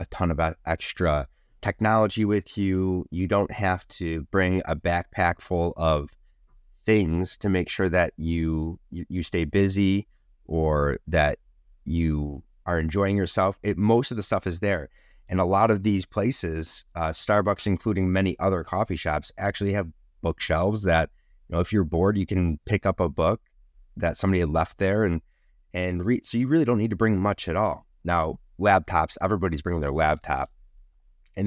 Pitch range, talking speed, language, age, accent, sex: 80-100 Hz, 170 wpm, English, 30-49, American, male